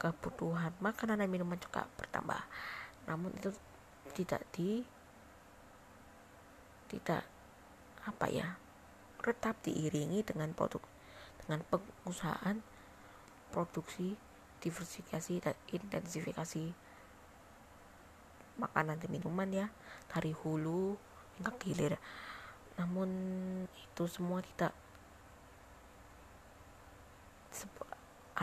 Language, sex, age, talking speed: Indonesian, female, 20-39, 75 wpm